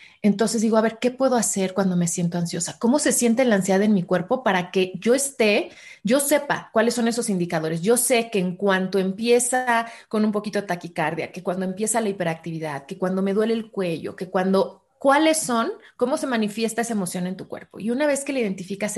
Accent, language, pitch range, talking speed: Mexican, Spanish, 180-230 Hz, 220 wpm